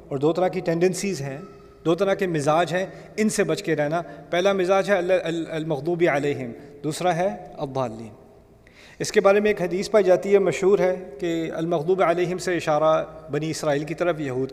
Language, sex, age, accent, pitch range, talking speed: English, male, 30-49, Indian, 145-185 Hz, 185 wpm